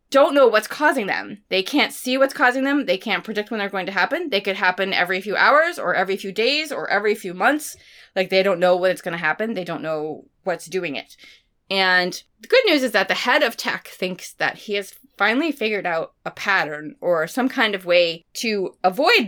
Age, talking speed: 20-39, 230 wpm